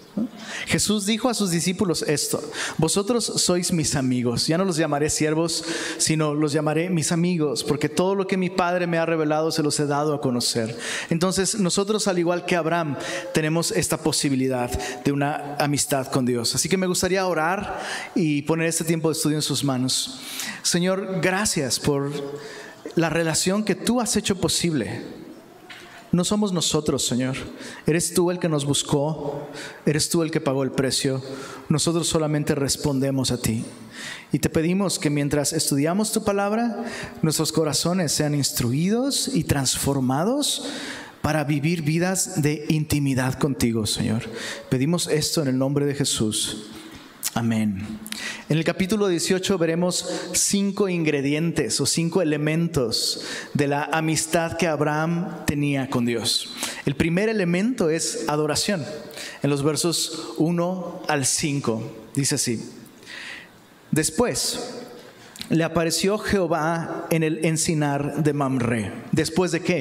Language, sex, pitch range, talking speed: Spanish, male, 145-180 Hz, 145 wpm